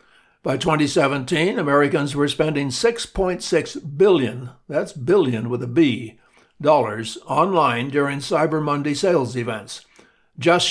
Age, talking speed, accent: 60-79, 100 wpm, American